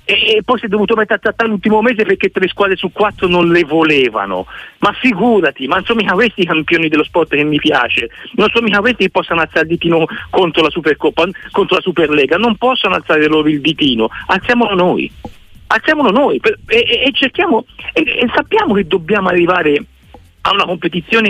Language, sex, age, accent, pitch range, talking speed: Italian, male, 50-69, native, 165-230 Hz, 195 wpm